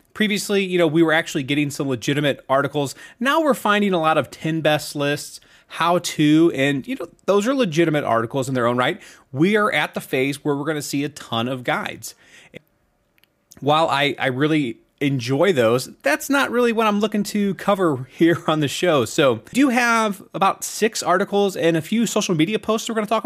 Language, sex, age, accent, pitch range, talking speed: English, male, 30-49, American, 140-200 Hz, 215 wpm